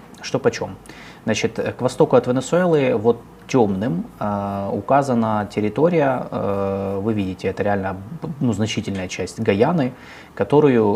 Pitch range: 100-125 Hz